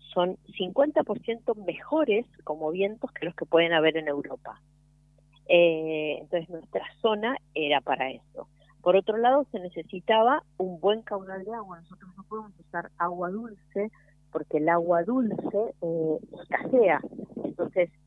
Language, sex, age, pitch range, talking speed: Spanish, female, 40-59, 150-205 Hz, 140 wpm